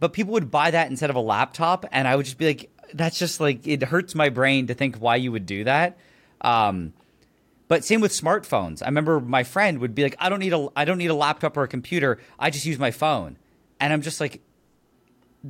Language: English